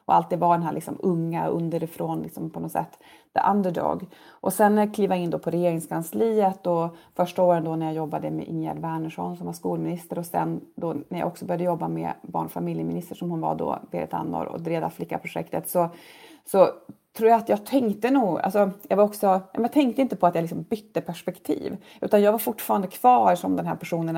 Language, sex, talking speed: Swedish, female, 210 wpm